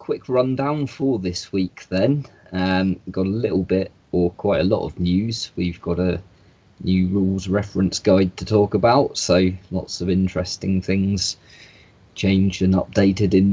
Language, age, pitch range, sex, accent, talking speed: English, 30-49, 95-130 Hz, male, British, 165 wpm